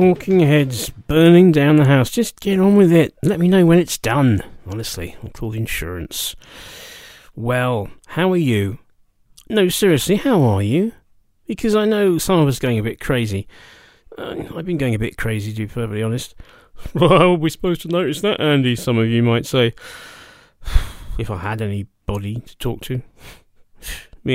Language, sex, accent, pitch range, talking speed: English, male, British, 105-155 Hz, 180 wpm